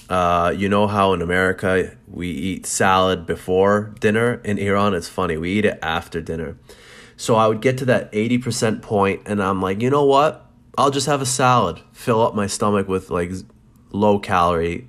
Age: 30-49